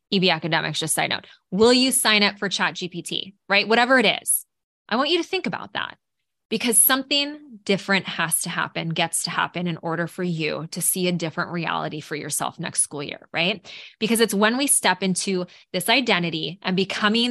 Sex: female